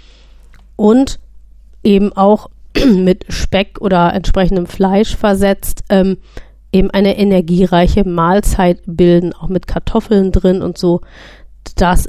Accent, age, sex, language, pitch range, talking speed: German, 30-49, female, German, 185-210 Hz, 110 wpm